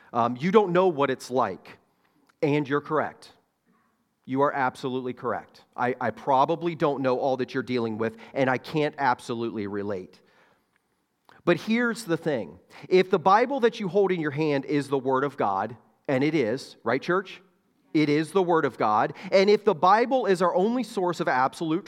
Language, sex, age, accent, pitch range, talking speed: English, male, 40-59, American, 140-205 Hz, 185 wpm